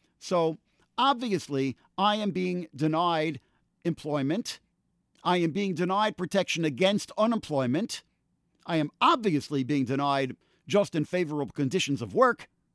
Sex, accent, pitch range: male, American, 145-215 Hz